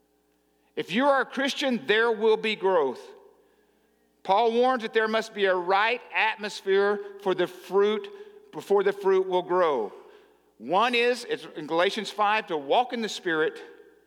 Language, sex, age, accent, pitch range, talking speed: English, male, 50-69, American, 155-230 Hz, 155 wpm